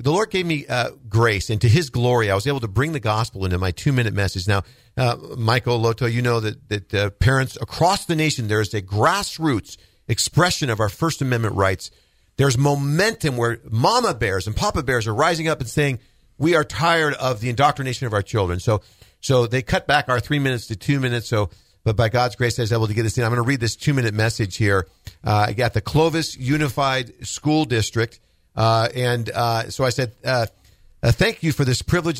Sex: male